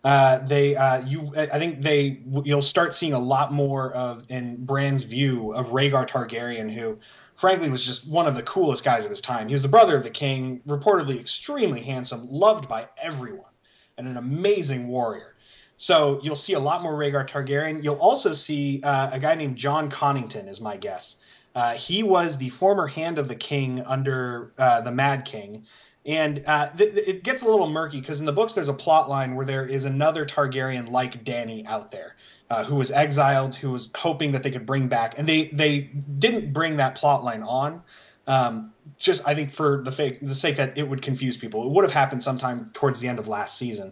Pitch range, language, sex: 130-155 Hz, English, male